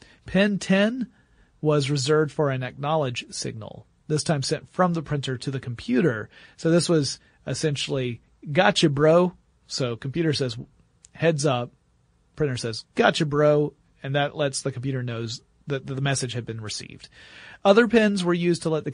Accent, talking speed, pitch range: American, 160 wpm, 125-160 Hz